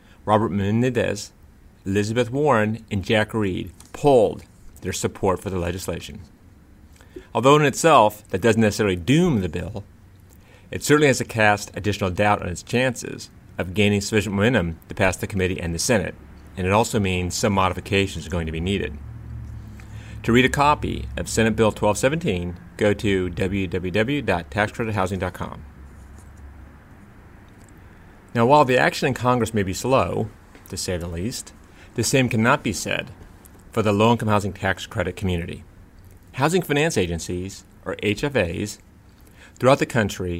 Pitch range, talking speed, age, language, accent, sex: 90-110 Hz, 145 wpm, 30-49, English, American, male